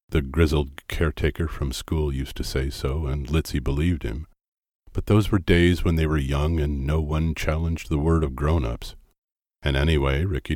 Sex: male